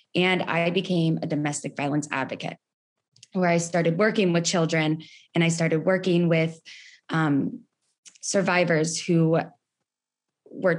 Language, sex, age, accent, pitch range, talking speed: English, female, 20-39, American, 165-210 Hz, 120 wpm